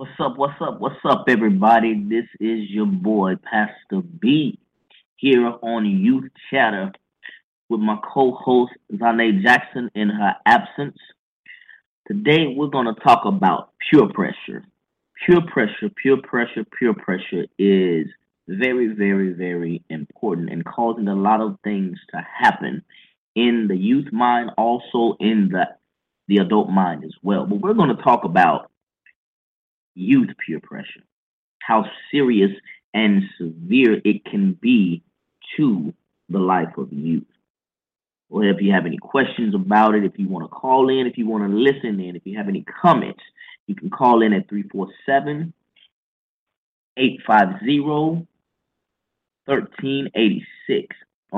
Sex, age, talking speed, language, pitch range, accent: male, 20-39, 140 wpm, English, 100-140 Hz, American